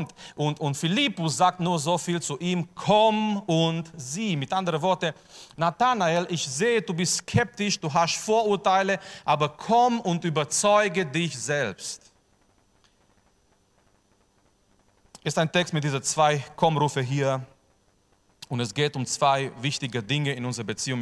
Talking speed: 135 wpm